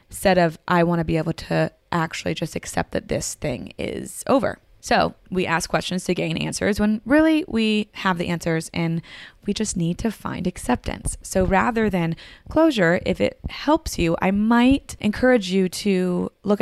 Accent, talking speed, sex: American, 180 wpm, female